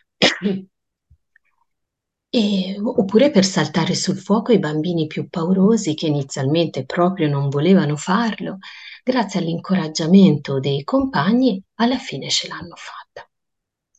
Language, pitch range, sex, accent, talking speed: Italian, 155-210 Hz, female, native, 105 wpm